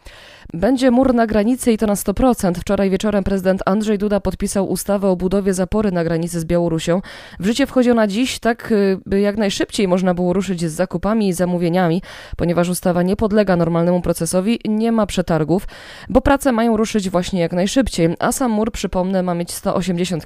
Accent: native